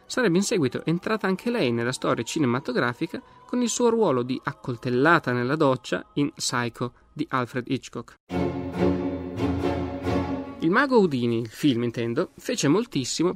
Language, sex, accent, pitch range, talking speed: Italian, male, native, 120-180 Hz, 135 wpm